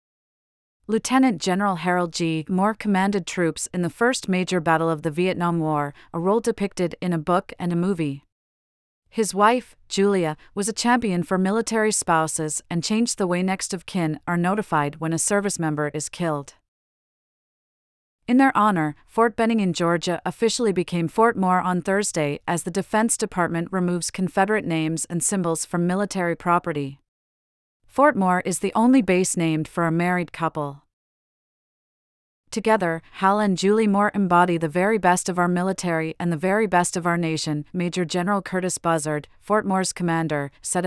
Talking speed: 165 wpm